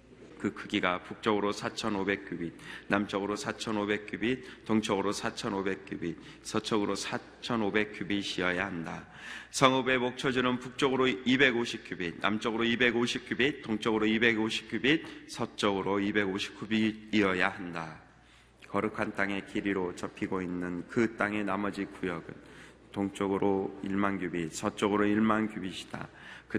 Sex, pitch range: male, 100-115 Hz